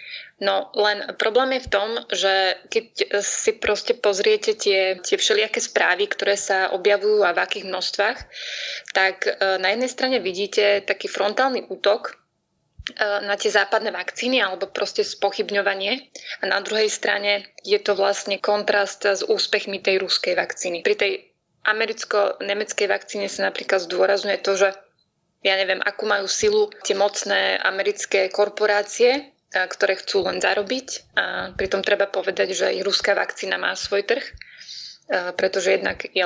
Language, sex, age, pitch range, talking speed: Slovak, female, 20-39, 190-220 Hz, 140 wpm